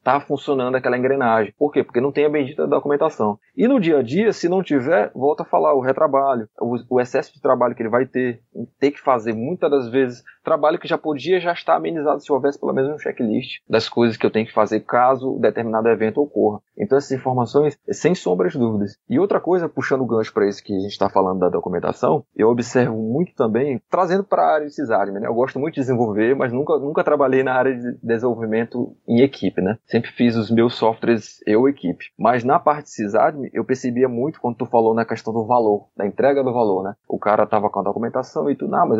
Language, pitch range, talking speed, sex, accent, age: Portuguese, 115-150 Hz, 230 wpm, male, Brazilian, 20-39